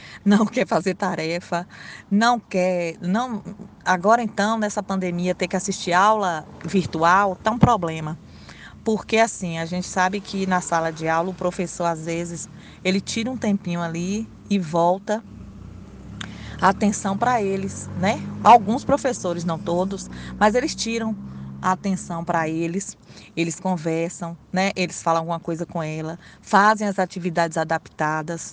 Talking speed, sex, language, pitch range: 140 wpm, female, Portuguese, 165-200 Hz